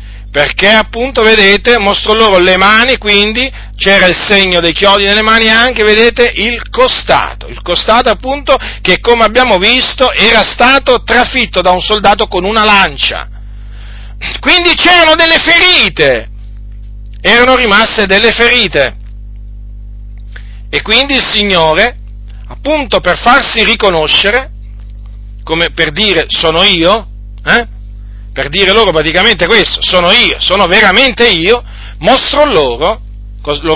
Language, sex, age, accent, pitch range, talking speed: Italian, male, 40-59, native, 170-255 Hz, 125 wpm